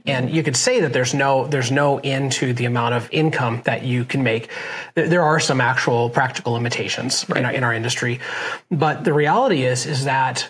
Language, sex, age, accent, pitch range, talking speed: English, male, 30-49, American, 130-155 Hz, 205 wpm